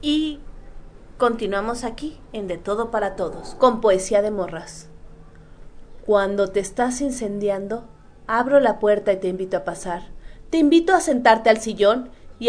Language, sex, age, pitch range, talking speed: Spanish, female, 30-49, 185-230 Hz, 150 wpm